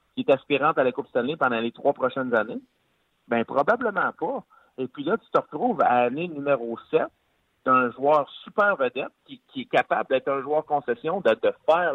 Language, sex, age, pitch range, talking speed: French, male, 50-69, 125-195 Hz, 200 wpm